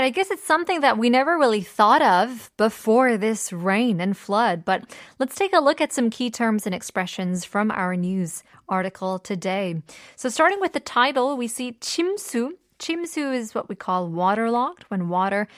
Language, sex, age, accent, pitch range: Korean, female, 20-39, American, 190-245 Hz